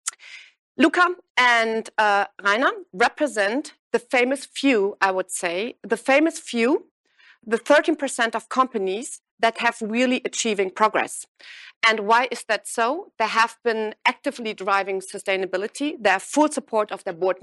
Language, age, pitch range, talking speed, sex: German, 40-59, 205-270 Hz, 140 wpm, female